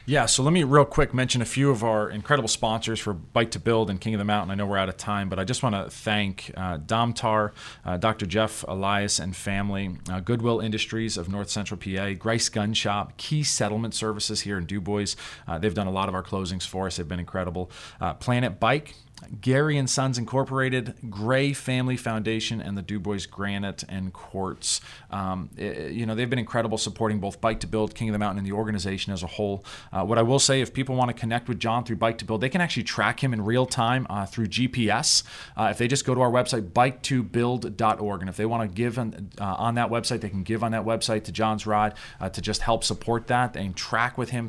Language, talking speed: English, 235 wpm